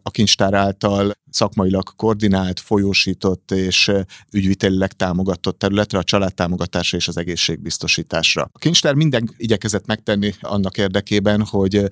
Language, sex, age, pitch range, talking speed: Hungarian, male, 30-49, 95-115 Hz, 115 wpm